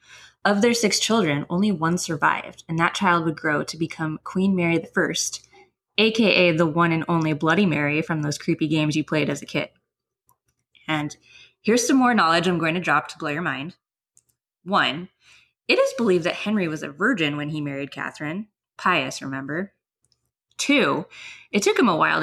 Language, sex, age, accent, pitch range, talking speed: English, female, 20-39, American, 160-205 Hz, 180 wpm